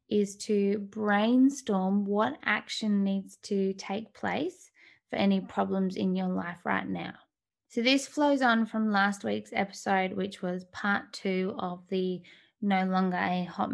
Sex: female